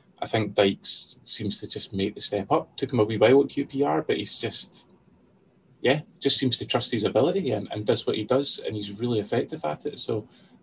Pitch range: 100-120 Hz